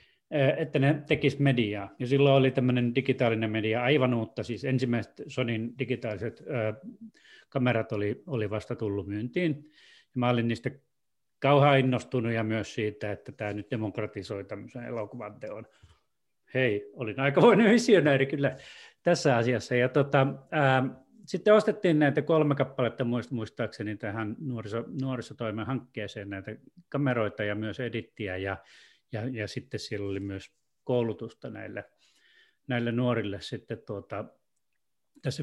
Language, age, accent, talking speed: Finnish, 30-49, native, 135 wpm